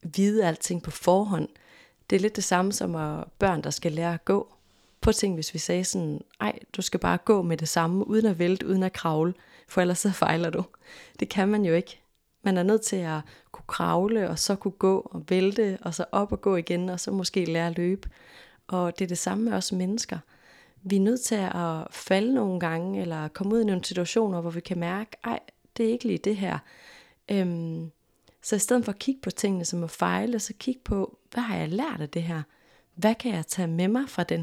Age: 30-49